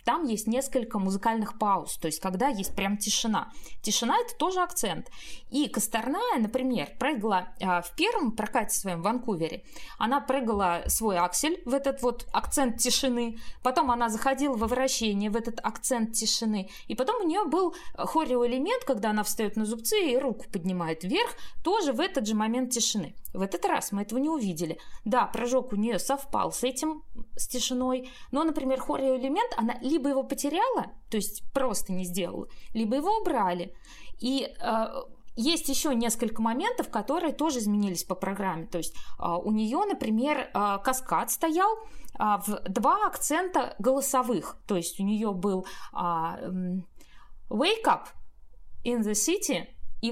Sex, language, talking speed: female, Russian, 155 wpm